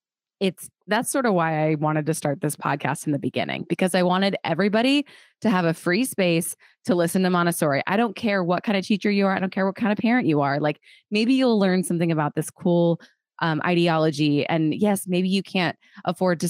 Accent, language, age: American, English, 20-39